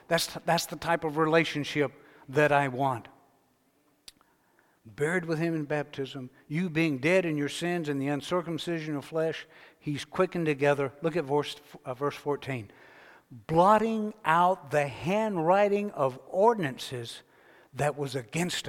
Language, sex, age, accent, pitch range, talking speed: English, male, 60-79, American, 150-220 Hz, 140 wpm